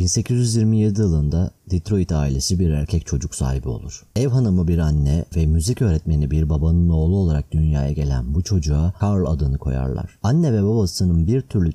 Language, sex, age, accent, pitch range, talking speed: Turkish, male, 40-59, native, 80-105 Hz, 165 wpm